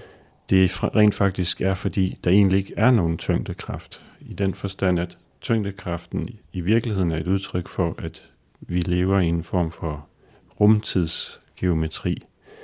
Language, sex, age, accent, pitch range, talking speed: Danish, male, 40-59, native, 85-100 Hz, 140 wpm